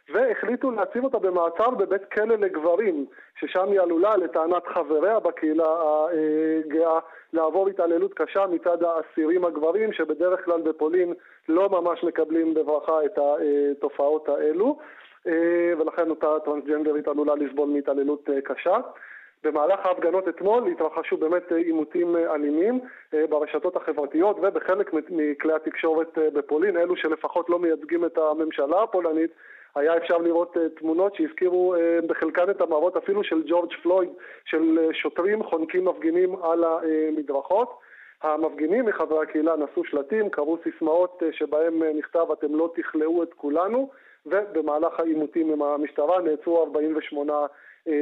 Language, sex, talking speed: Hebrew, male, 120 wpm